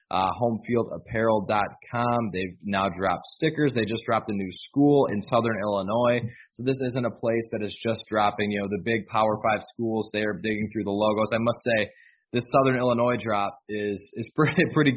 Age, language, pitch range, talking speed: 20-39, English, 105-125 Hz, 190 wpm